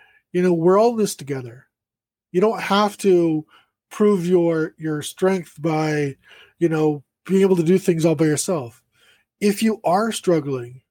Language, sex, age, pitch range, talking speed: English, male, 20-39, 155-215 Hz, 165 wpm